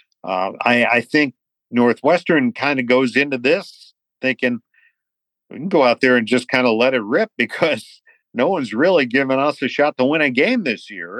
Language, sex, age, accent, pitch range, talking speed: English, male, 50-69, American, 110-140 Hz, 200 wpm